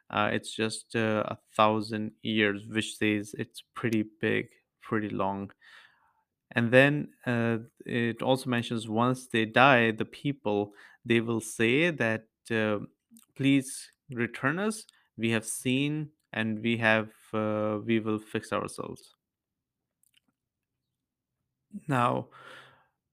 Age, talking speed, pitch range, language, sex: 30-49, 115 wpm, 110-130 Hz, English, male